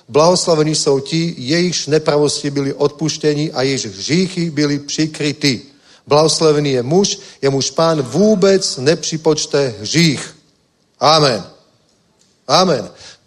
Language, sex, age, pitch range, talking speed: Czech, male, 40-59, 135-165 Hz, 105 wpm